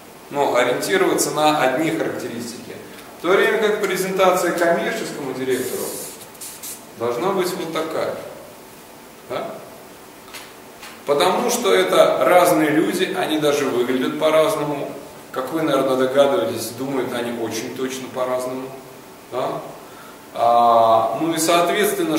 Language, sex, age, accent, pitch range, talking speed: Russian, male, 20-39, native, 130-190 Hz, 110 wpm